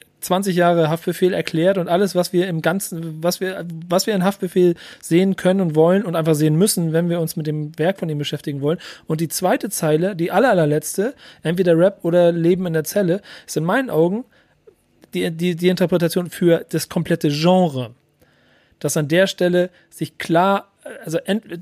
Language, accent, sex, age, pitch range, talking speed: German, German, male, 40-59, 160-185 Hz, 185 wpm